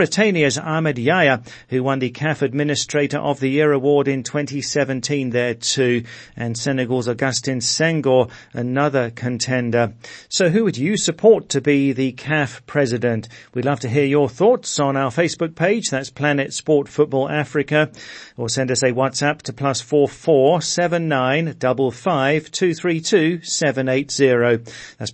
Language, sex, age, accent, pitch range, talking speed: English, male, 40-59, British, 130-155 Hz, 160 wpm